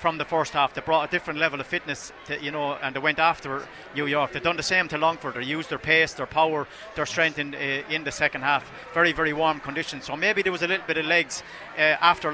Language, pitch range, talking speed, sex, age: English, 140-165 Hz, 270 wpm, male, 30-49